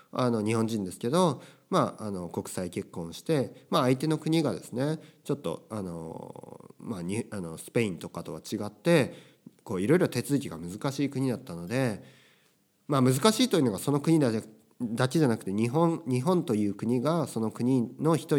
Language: Japanese